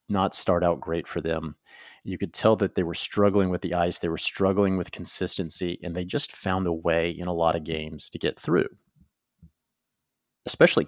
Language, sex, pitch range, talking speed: English, male, 90-100 Hz, 200 wpm